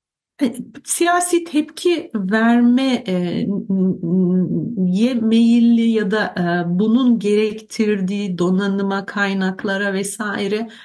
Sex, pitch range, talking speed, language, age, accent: female, 185-250 Hz, 60 wpm, Turkish, 60-79, native